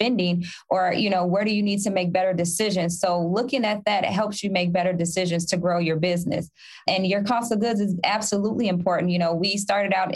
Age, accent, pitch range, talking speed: 20-39, American, 180-205 Hz, 225 wpm